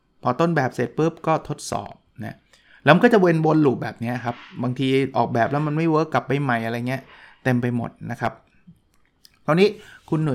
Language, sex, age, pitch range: Thai, male, 20-39, 120-155 Hz